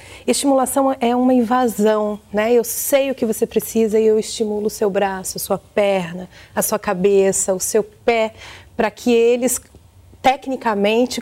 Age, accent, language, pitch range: 30-49, Brazilian, Portuguese, 200-240 Hz